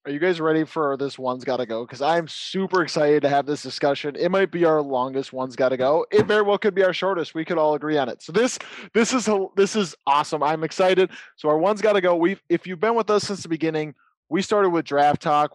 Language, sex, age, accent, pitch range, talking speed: English, male, 20-39, American, 140-180 Hz, 265 wpm